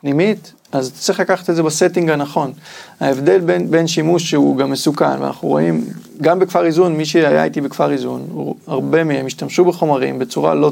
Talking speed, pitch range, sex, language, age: 175 wpm, 135-175 Hz, male, Hebrew, 30-49